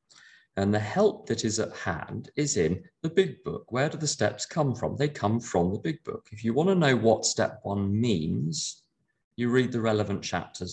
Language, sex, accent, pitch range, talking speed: English, male, British, 105-155 Hz, 215 wpm